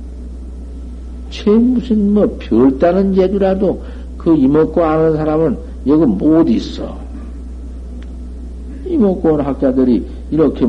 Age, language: 60-79, Korean